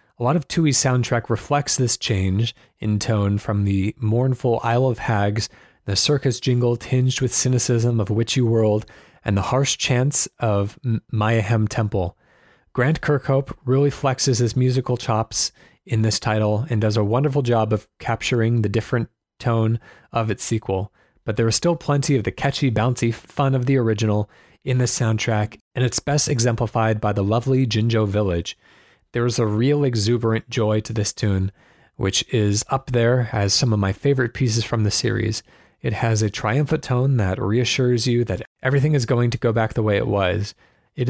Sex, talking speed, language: male, 180 wpm, English